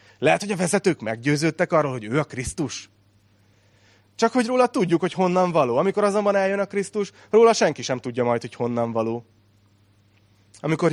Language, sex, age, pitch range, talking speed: Hungarian, male, 30-49, 105-145 Hz, 170 wpm